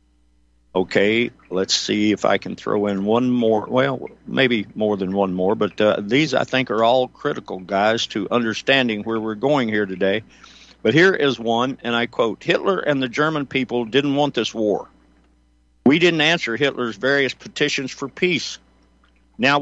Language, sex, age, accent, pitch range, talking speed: English, male, 60-79, American, 100-135 Hz, 175 wpm